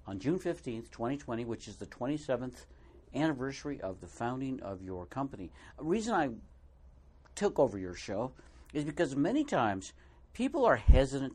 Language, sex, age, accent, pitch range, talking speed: English, male, 60-79, American, 105-140 Hz, 155 wpm